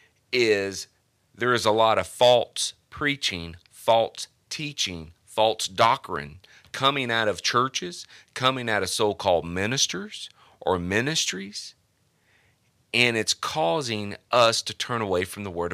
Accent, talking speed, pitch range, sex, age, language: American, 125 wpm, 100-125 Hz, male, 40-59, English